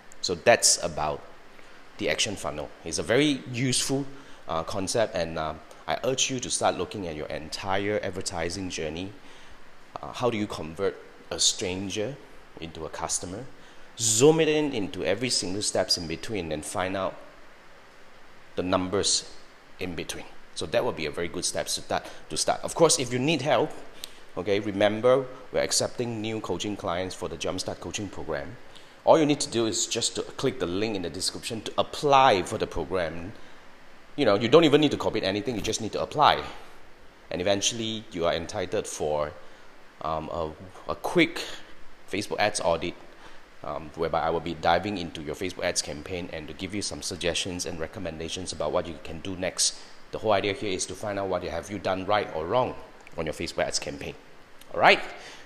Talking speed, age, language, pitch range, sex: 190 wpm, 30-49, English, 85-120 Hz, male